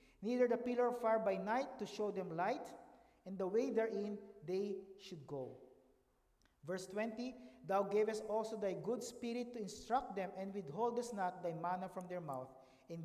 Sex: male